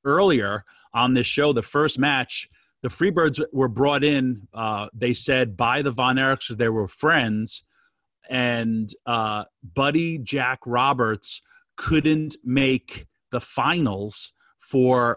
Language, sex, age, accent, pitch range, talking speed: English, male, 30-49, American, 110-140 Hz, 130 wpm